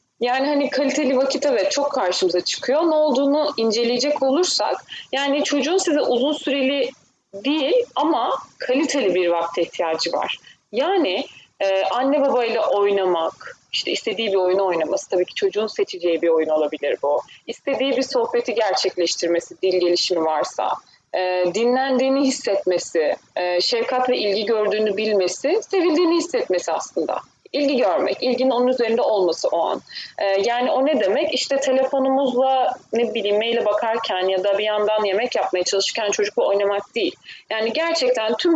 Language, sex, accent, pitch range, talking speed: Turkish, female, native, 200-295 Hz, 140 wpm